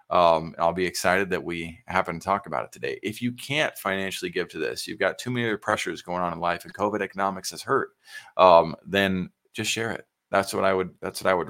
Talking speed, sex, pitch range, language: 245 wpm, male, 95-120 Hz, English